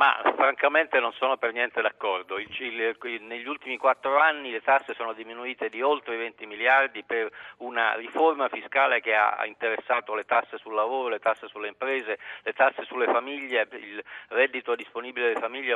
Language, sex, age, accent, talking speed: Italian, male, 50-69, native, 170 wpm